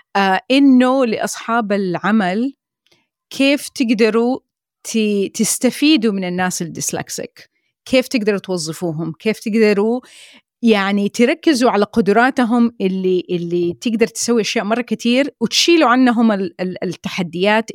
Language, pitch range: Arabic, 190-240 Hz